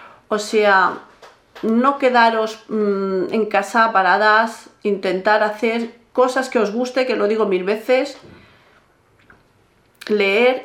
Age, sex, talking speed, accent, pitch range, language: 40-59, female, 105 wpm, Spanish, 200-250 Hz, Spanish